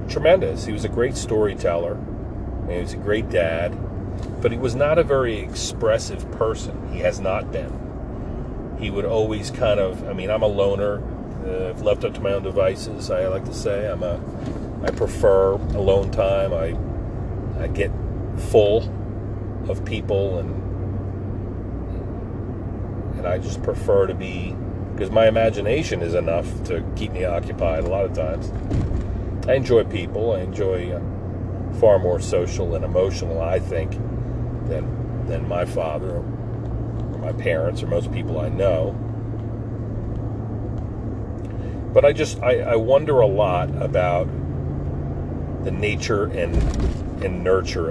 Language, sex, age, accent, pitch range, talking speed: English, male, 40-59, American, 90-110 Hz, 145 wpm